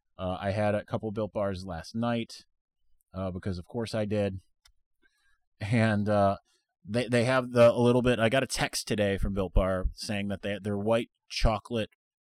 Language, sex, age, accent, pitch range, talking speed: English, male, 30-49, American, 100-125 Hz, 190 wpm